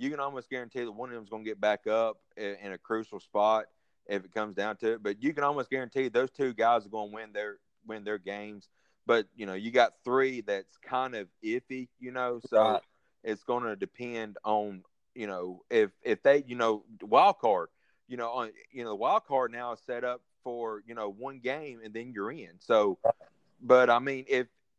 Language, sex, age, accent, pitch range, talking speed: English, male, 30-49, American, 110-140 Hz, 225 wpm